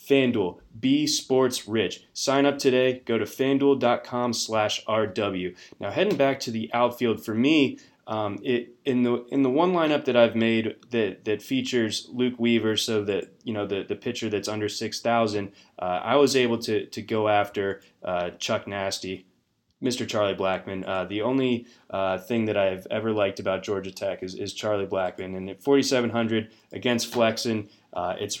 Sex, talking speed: male, 175 wpm